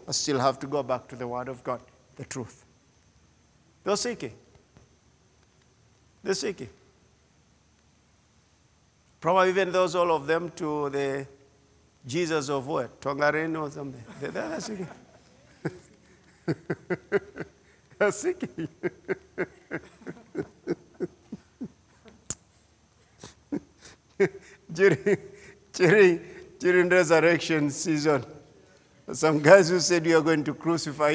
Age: 50-69